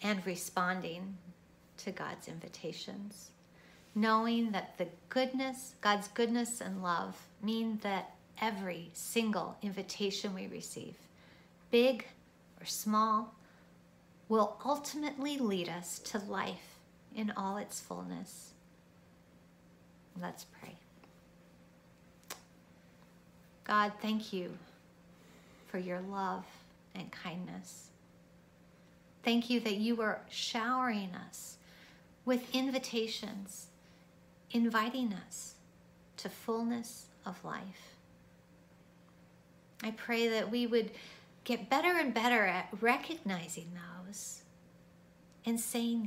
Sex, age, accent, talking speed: female, 50-69, American, 95 wpm